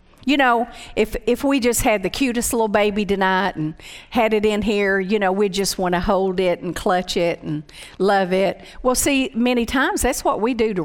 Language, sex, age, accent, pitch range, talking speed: English, female, 50-69, American, 200-295 Hz, 220 wpm